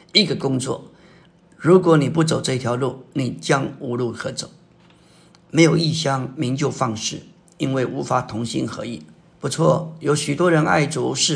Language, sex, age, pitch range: Chinese, male, 50-69, 130-170 Hz